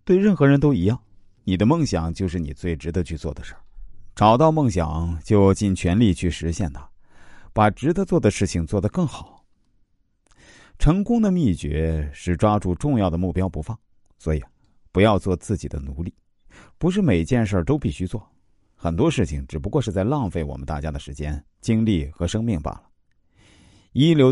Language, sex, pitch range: Chinese, male, 85-120 Hz